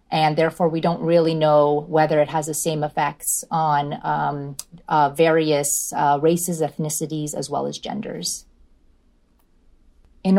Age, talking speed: 30-49, 140 wpm